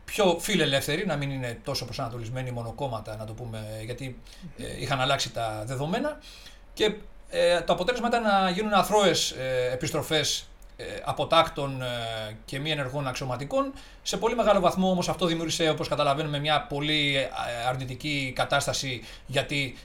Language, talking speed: Greek, 135 wpm